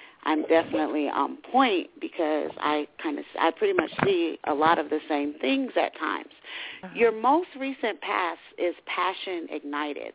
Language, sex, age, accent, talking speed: English, female, 40-59, American, 165 wpm